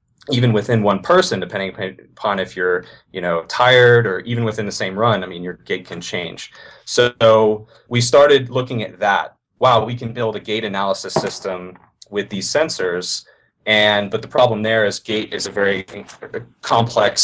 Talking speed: 180 wpm